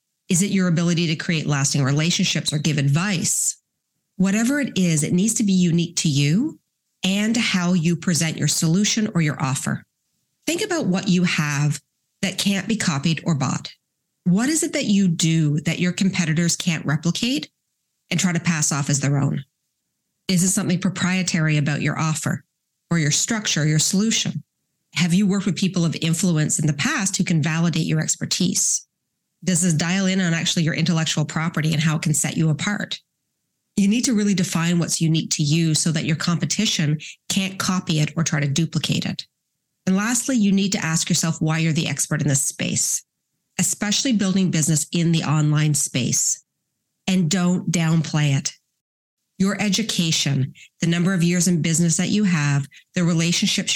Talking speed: 180 wpm